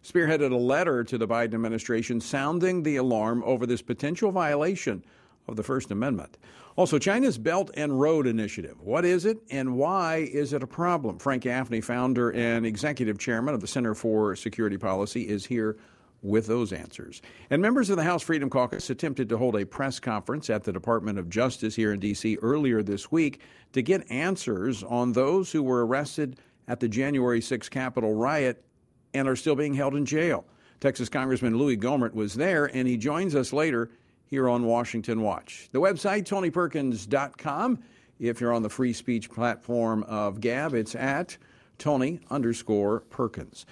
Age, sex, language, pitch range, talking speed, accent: 50-69, male, English, 115-145 Hz, 175 wpm, American